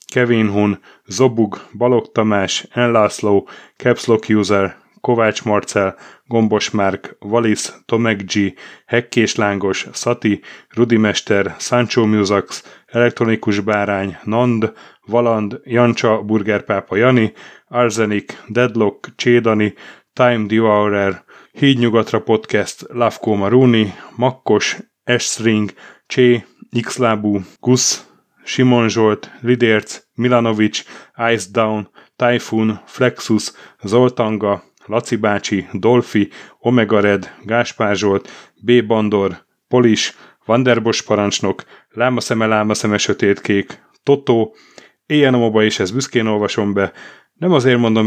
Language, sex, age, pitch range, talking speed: Hungarian, male, 30-49, 105-120 Hz, 95 wpm